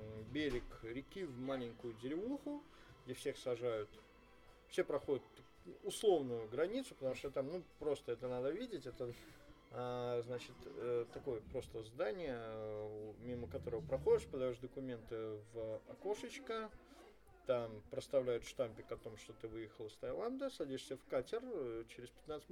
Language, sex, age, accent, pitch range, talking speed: Russian, male, 20-39, native, 115-170 Hz, 130 wpm